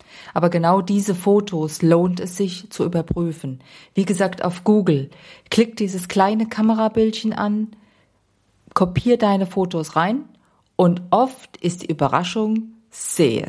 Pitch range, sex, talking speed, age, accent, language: 150-200 Hz, female, 125 wpm, 40-59, German, German